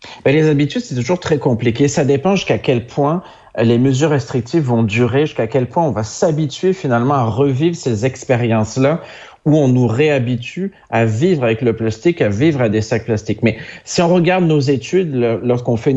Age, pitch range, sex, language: 40-59, 115-150 Hz, male, French